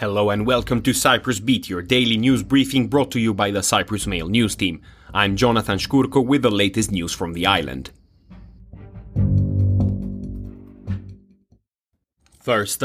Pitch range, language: 105-130 Hz, English